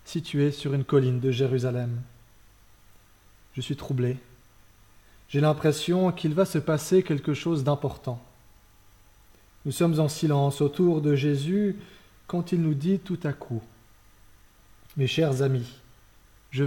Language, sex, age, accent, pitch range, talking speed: French, male, 30-49, French, 115-170 Hz, 135 wpm